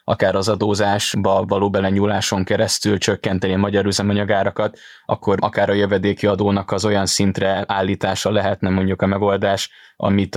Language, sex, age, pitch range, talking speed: Hungarian, male, 20-39, 95-105 Hz, 140 wpm